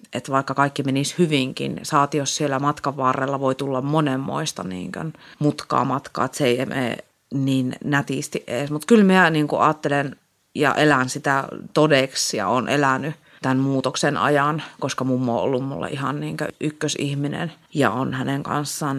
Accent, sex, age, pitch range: native, female, 30-49, 135-155 Hz